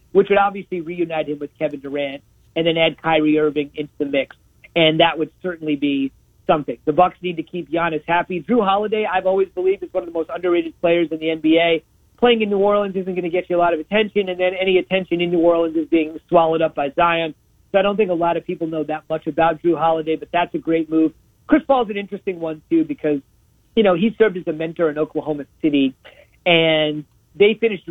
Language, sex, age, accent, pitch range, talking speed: English, male, 40-59, American, 155-180 Hz, 235 wpm